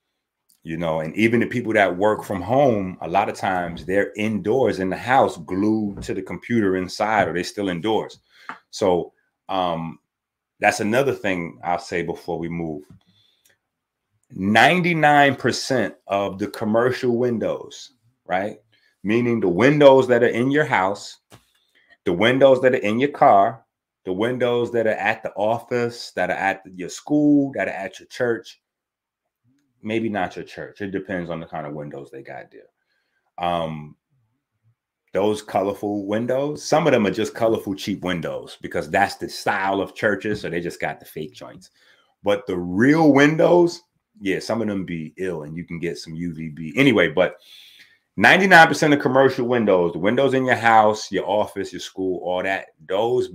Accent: American